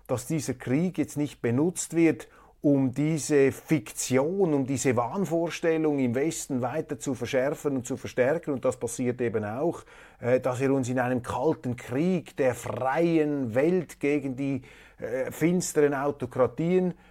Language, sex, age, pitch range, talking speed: German, male, 30-49, 125-155 Hz, 145 wpm